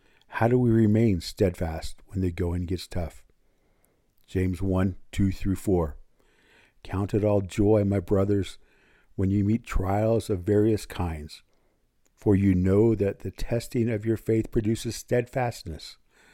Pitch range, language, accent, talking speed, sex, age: 90-110 Hz, English, American, 145 wpm, male, 50-69